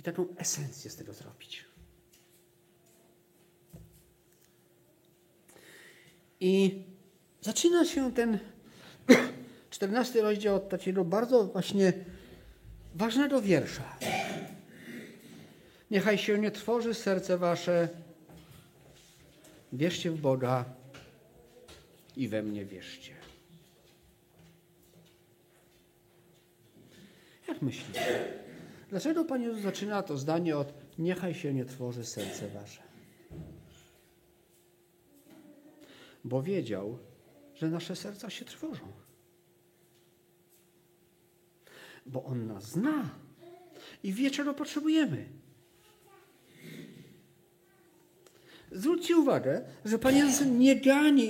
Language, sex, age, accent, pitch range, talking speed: Polish, male, 50-69, native, 170-240 Hz, 75 wpm